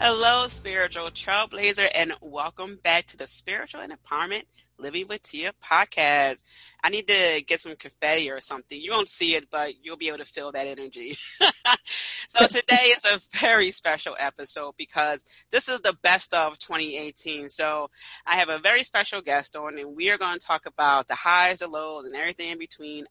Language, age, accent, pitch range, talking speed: English, 30-49, American, 145-185 Hz, 185 wpm